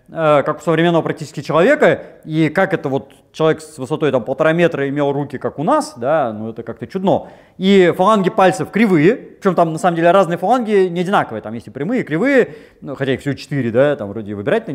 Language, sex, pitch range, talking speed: Russian, male, 145-190 Hz, 215 wpm